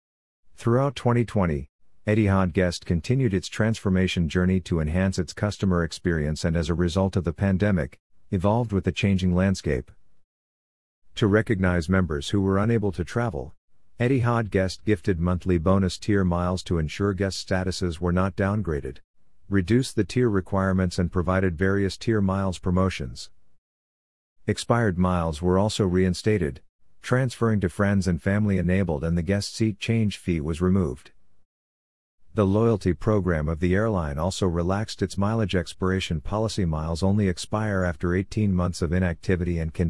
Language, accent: English, American